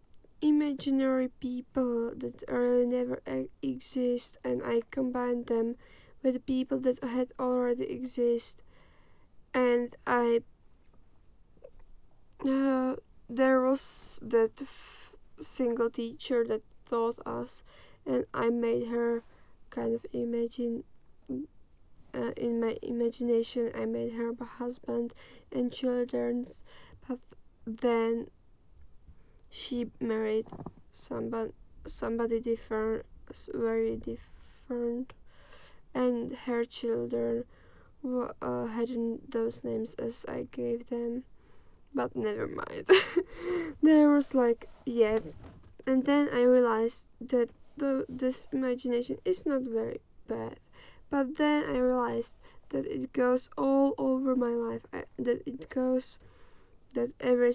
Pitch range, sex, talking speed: 230-260 Hz, female, 105 wpm